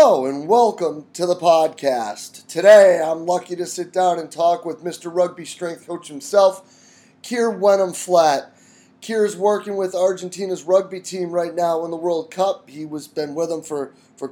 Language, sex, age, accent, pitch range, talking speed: English, male, 20-39, American, 160-195 Hz, 180 wpm